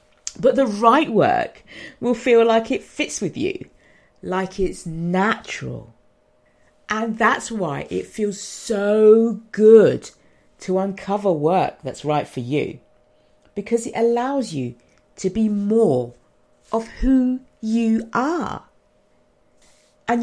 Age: 40-59